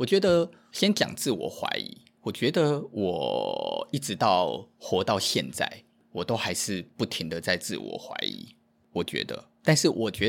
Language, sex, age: Chinese, male, 20-39